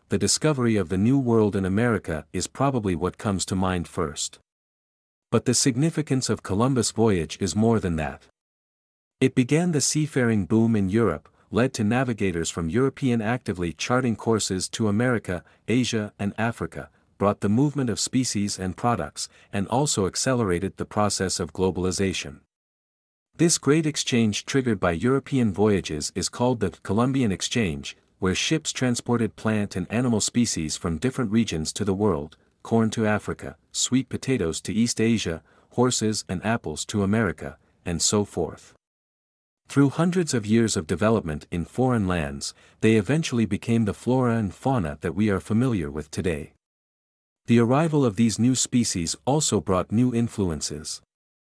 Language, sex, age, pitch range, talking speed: English, male, 50-69, 90-125 Hz, 155 wpm